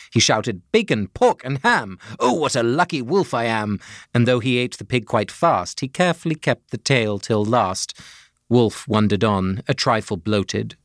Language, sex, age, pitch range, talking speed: English, male, 30-49, 110-180 Hz, 190 wpm